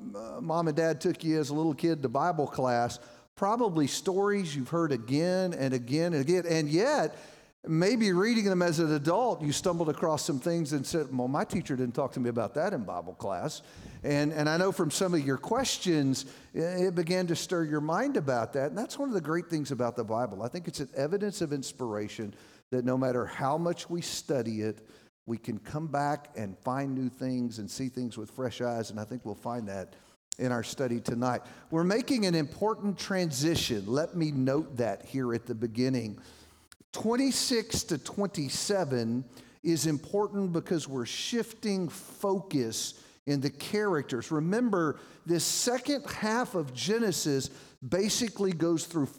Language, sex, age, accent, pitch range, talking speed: English, male, 50-69, American, 130-180 Hz, 180 wpm